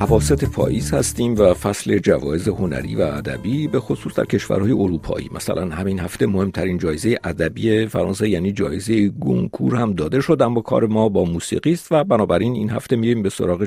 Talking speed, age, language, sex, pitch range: 175 wpm, 50-69, Persian, male, 95-125 Hz